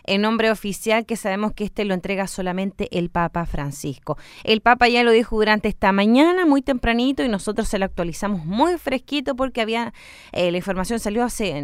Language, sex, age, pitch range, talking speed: Spanish, female, 20-39, 185-230 Hz, 190 wpm